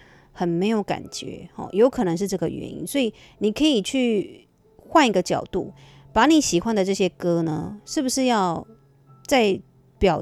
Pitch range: 175-225 Hz